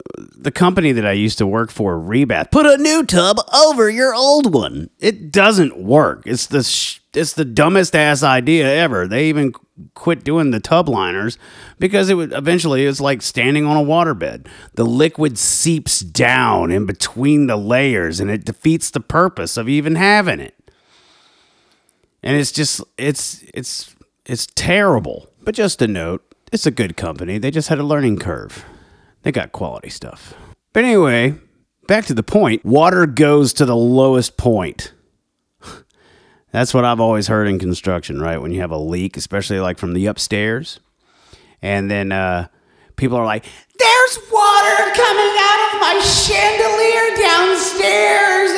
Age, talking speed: 30-49, 165 wpm